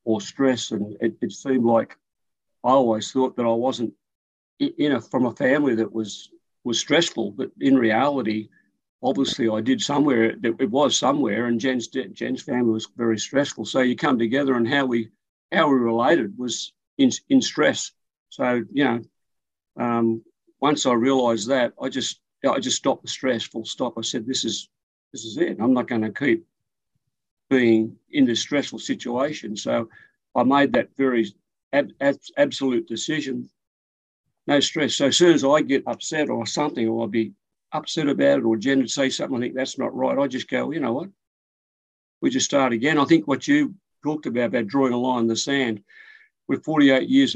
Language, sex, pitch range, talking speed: English, male, 115-140 Hz, 190 wpm